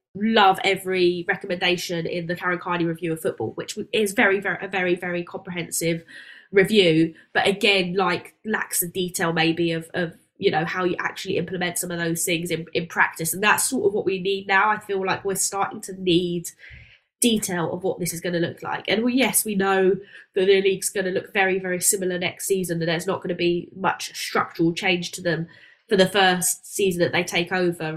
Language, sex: English, female